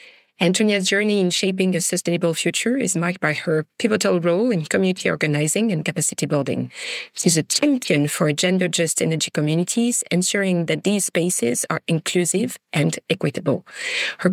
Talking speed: 145 wpm